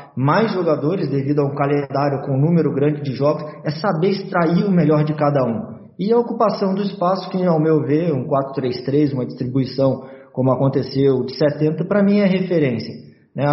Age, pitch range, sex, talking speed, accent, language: 20-39, 145-170 Hz, male, 180 wpm, Brazilian, Portuguese